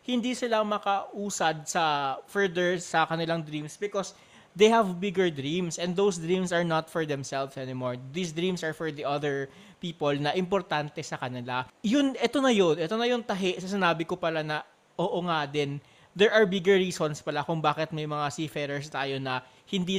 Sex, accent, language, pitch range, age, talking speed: male, native, Filipino, 150-185 Hz, 20-39, 185 wpm